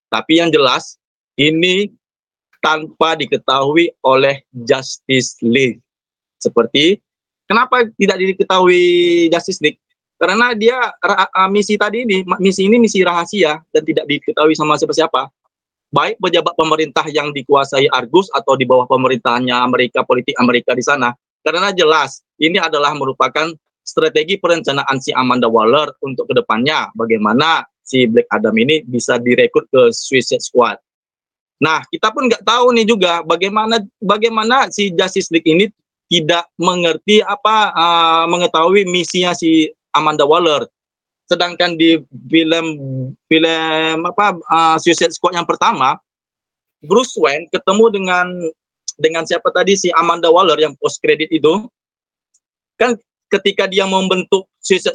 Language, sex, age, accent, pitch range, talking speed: Indonesian, male, 20-39, native, 150-200 Hz, 130 wpm